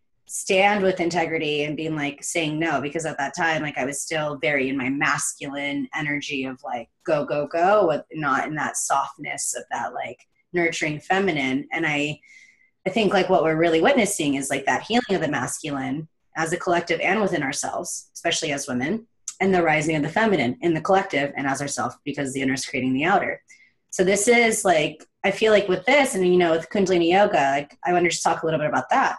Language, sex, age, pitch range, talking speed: English, female, 20-39, 150-200 Hz, 220 wpm